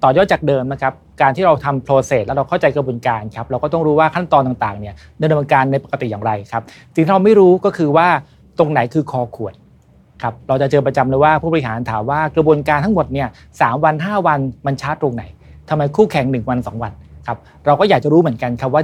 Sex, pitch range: male, 125-160 Hz